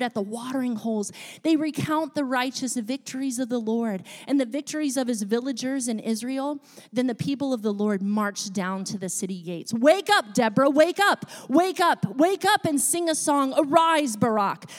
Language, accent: English, American